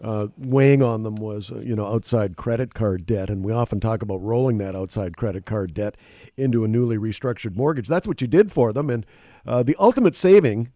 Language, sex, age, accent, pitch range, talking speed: English, male, 50-69, American, 110-140 Hz, 210 wpm